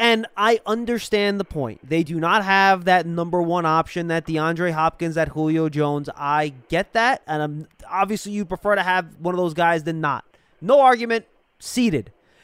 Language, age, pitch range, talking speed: English, 20-39, 165-215 Hz, 185 wpm